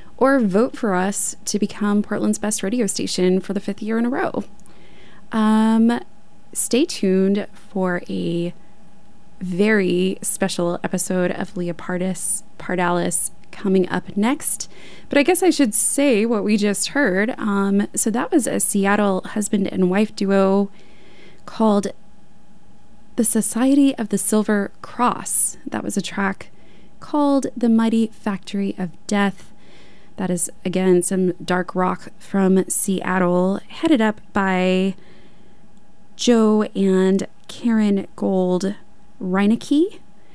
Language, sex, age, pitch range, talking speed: English, female, 20-39, 185-220 Hz, 125 wpm